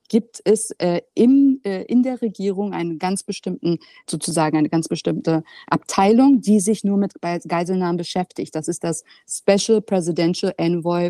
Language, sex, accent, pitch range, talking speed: German, female, German, 170-220 Hz, 150 wpm